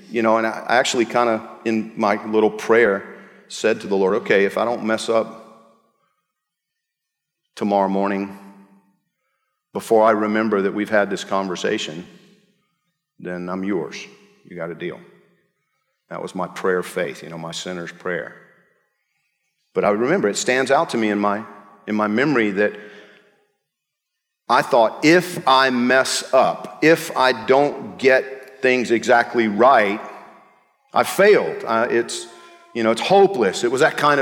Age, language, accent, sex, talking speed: 50-69, English, American, male, 155 wpm